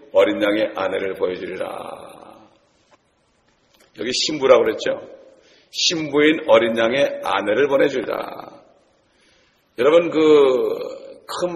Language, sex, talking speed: English, male, 80 wpm